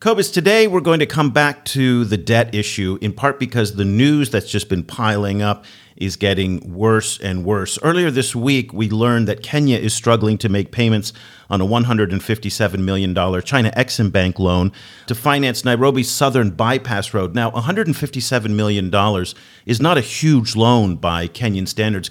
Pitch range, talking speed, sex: 100-125 Hz, 170 wpm, male